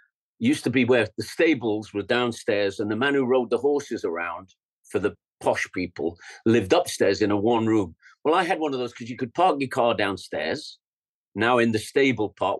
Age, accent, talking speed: 50-69, British, 210 wpm